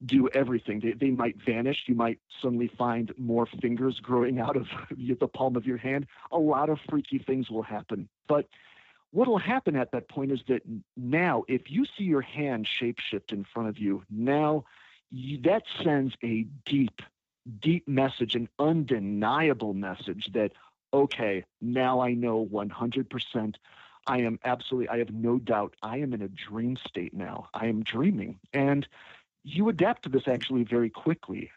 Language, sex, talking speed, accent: English, male, 170 wpm, American